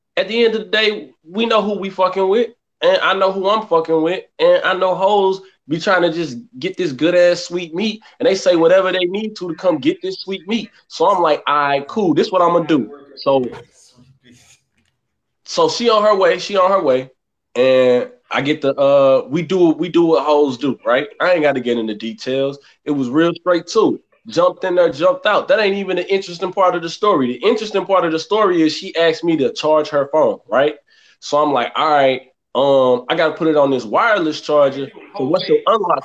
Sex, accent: male, American